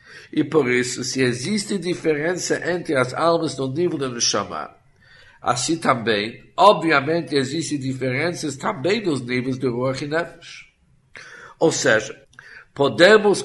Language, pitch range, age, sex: Korean, 130-160 Hz, 50-69, male